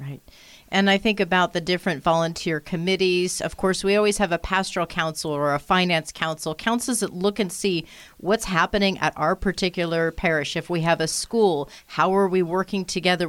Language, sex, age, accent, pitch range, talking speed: English, female, 40-59, American, 170-225 Hz, 190 wpm